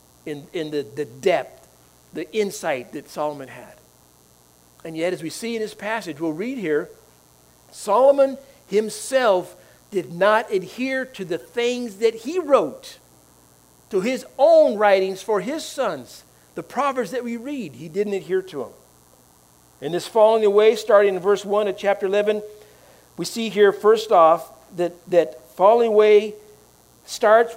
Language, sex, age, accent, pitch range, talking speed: English, male, 50-69, American, 160-225 Hz, 150 wpm